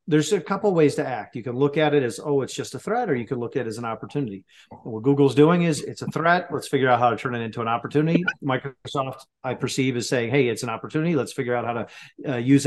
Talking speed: 285 wpm